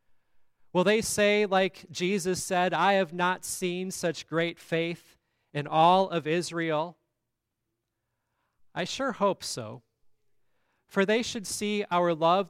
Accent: American